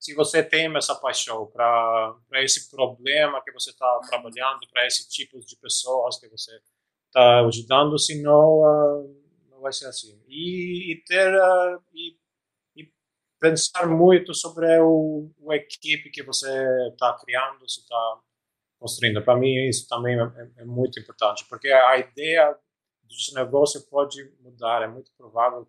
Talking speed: 150 wpm